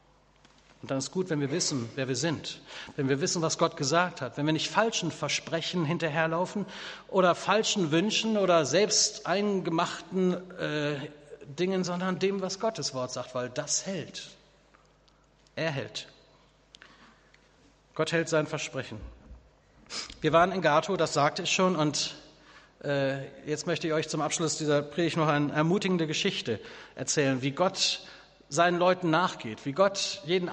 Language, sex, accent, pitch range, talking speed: German, male, German, 145-180 Hz, 150 wpm